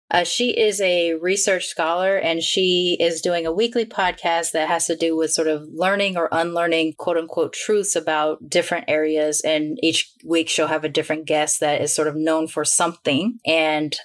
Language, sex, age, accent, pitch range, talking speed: English, female, 20-39, American, 155-175 Hz, 190 wpm